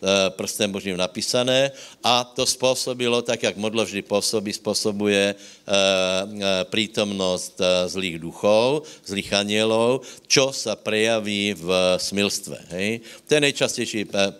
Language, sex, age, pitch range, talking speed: Slovak, male, 60-79, 95-115 Hz, 100 wpm